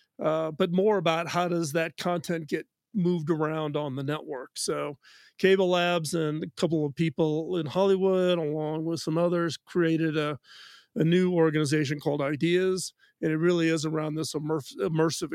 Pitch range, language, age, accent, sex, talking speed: 150-180 Hz, English, 40-59, American, male, 165 wpm